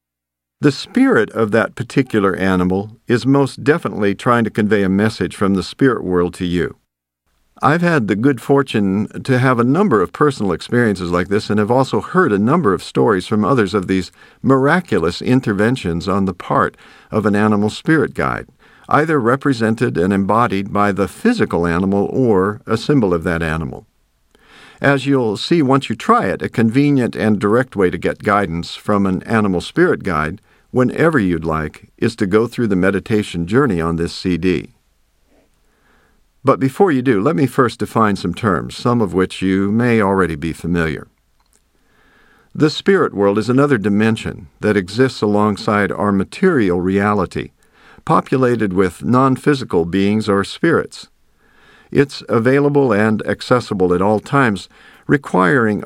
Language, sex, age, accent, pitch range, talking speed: English, male, 50-69, American, 90-130 Hz, 160 wpm